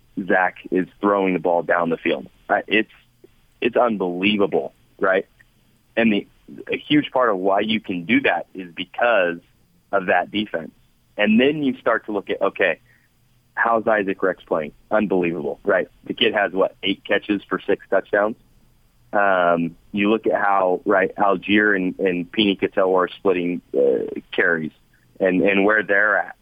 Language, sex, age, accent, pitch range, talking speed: English, male, 30-49, American, 90-110 Hz, 165 wpm